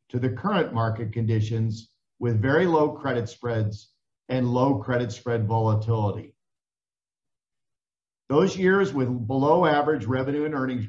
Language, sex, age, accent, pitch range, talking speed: English, male, 50-69, American, 115-150 Hz, 125 wpm